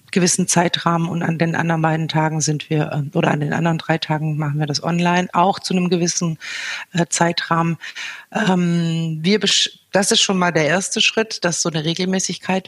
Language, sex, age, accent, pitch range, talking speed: German, female, 50-69, German, 165-185 Hz, 180 wpm